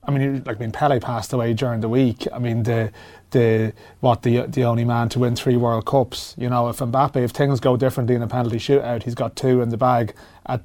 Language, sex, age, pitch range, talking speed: English, male, 30-49, 120-135 Hz, 250 wpm